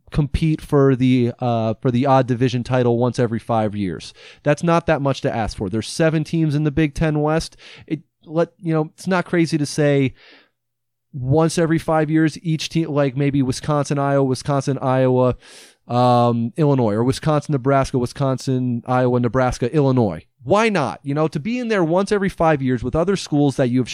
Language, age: English, 30-49